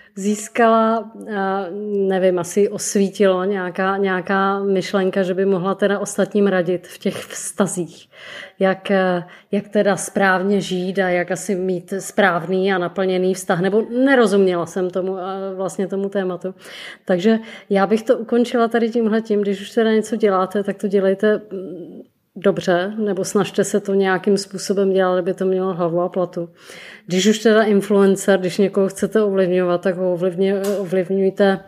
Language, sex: Czech, female